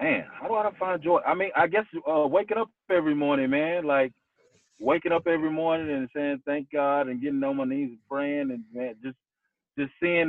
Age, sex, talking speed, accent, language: 20-39, male, 215 wpm, American, English